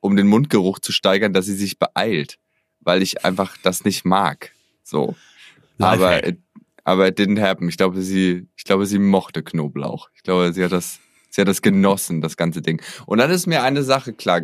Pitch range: 95-130 Hz